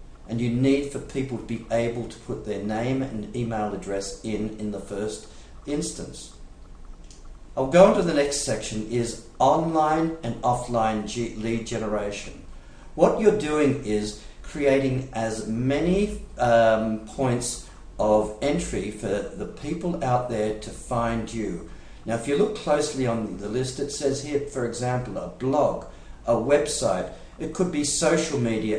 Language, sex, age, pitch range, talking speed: English, male, 50-69, 110-140 Hz, 155 wpm